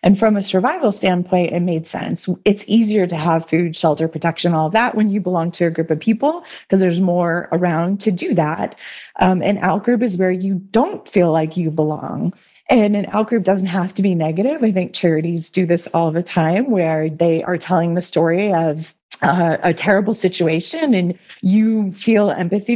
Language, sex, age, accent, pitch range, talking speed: English, female, 30-49, American, 165-200 Hz, 195 wpm